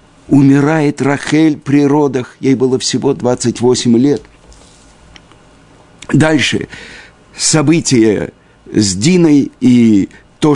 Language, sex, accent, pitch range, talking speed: Russian, male, native, 110-140 Hz, 85 wpm